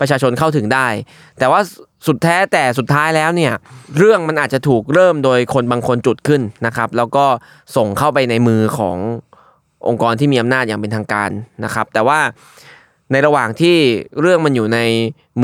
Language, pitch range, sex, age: Thai, 120-160 Hz, male, 20-39